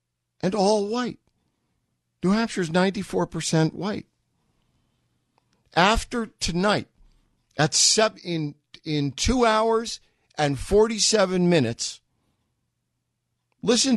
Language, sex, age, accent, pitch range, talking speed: English, male, 50-69, American, 125-200 Hz, 85 wpm